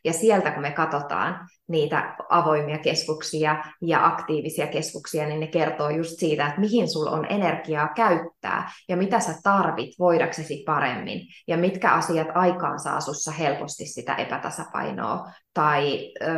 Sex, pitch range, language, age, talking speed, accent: female, 150-180 Hz, Finnish, 20-39, 130 wpm, native